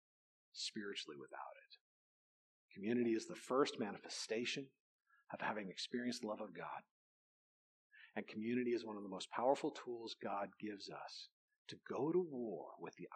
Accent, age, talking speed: American, 40-59, 145 wpm